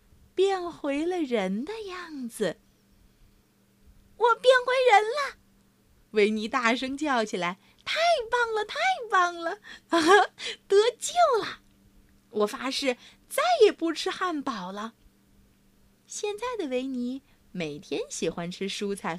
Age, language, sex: 30-49, Chinese, female